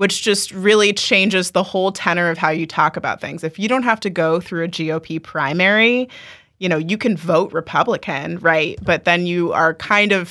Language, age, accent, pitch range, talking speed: English, 20-39, American, 160-190 Hz, 210 wpm